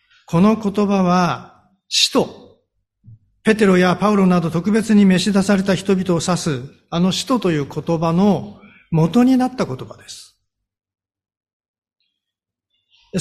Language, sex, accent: Japanese, male, native